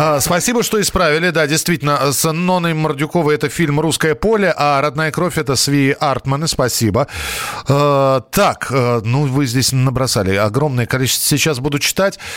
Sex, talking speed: male, 140 wpm